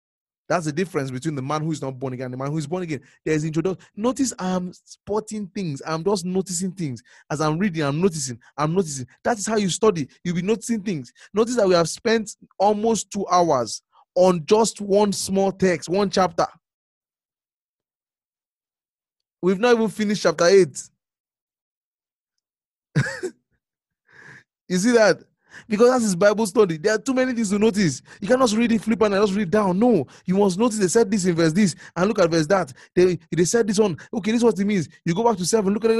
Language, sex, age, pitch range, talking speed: English, male, 20-39, 150-215 Hz, 205 wpm